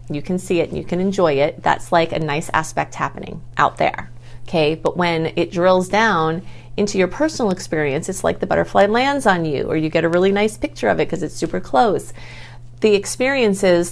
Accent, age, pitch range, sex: American, 30-49, 145-210 Hz, female